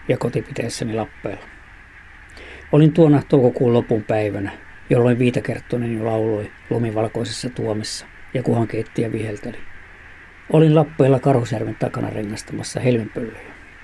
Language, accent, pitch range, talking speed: Finnish, native, 95-130 Hz, 105 wpm